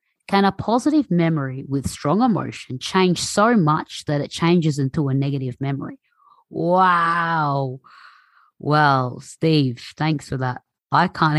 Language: English